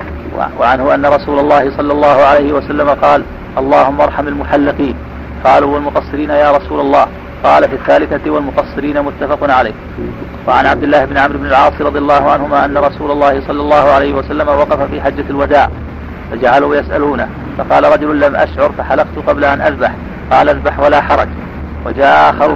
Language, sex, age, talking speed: Arabic, male, 40-59, 160 wpm